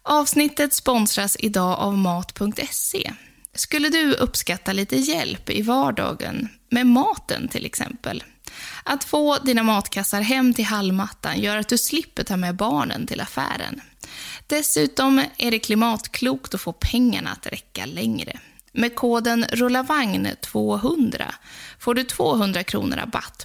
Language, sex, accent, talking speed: English, female, Swedish, 130 wpm